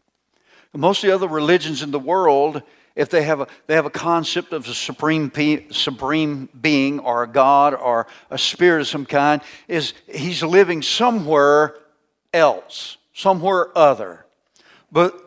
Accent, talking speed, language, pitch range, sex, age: American, 150 wpm, English, 145-175 Hz, male, 60-79